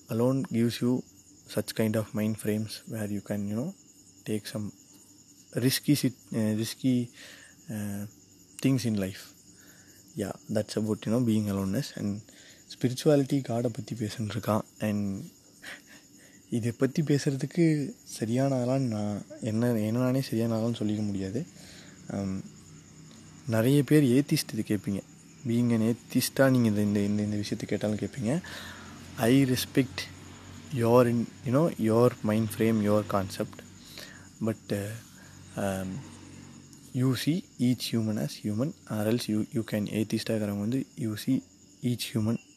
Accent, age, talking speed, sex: native, 20-39, 120 wpm, male